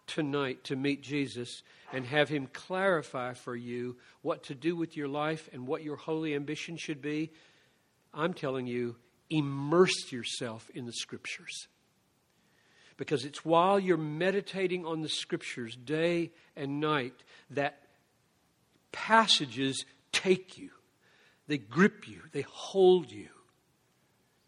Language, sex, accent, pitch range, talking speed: English, male, American, 135-165 Hz, 125 wpm